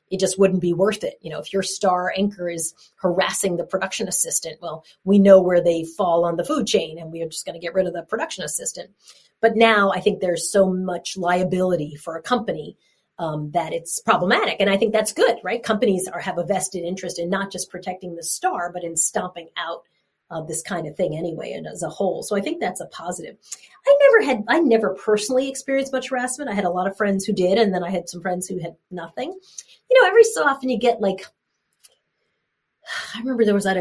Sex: female